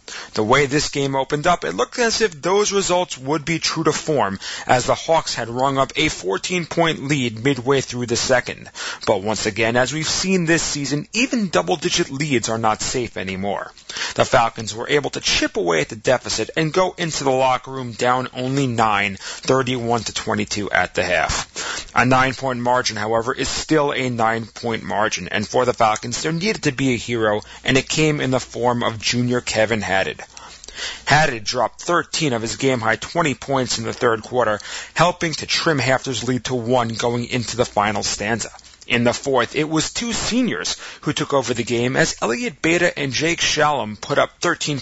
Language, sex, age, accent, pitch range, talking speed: English, male, 30-49, American, 115-150 Hz, 190 wpm